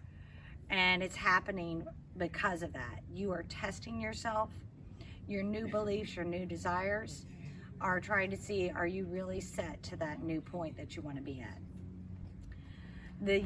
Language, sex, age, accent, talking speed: English, female, 40-59, American, 155 wpm